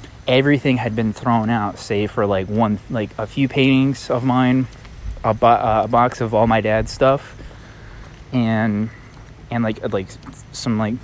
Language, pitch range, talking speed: English, 100-120 Hz, 160 wpm